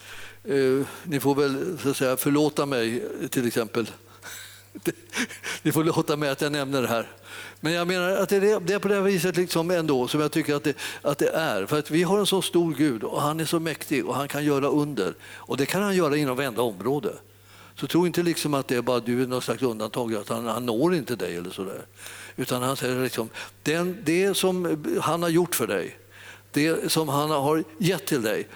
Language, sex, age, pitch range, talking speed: Swedish, male, 50-69, 120-170 Hz, 225 wpm